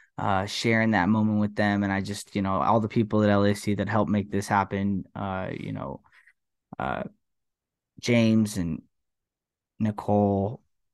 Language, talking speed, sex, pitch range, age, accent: English, 155 wpm, male, 105-120 Hz, 10-29, American